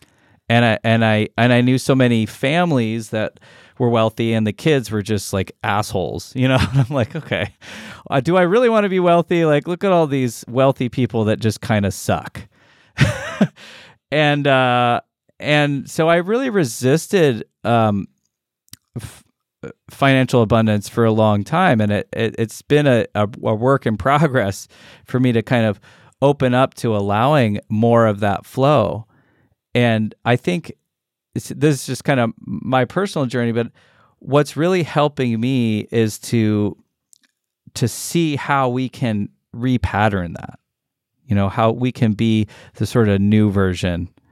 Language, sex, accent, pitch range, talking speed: English, male, American, 105-130 Hz, 160 wpm